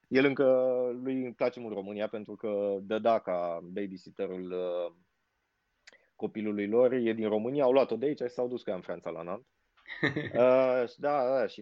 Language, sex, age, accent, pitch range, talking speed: Romanian, male, 20-39, native, 90-125 Hz, 175 wpm